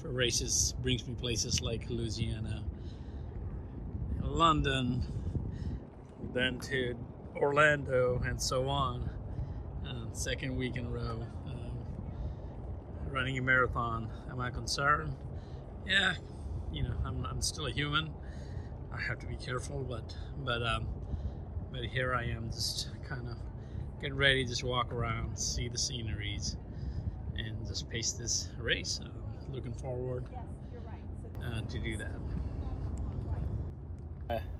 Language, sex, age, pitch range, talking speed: English, male, 30-49, 95-120 Hz, 120 wpm